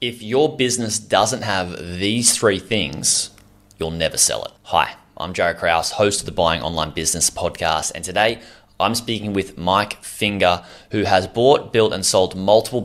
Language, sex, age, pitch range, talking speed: English, male, 20-39, 90-110 Hz, 175 wpm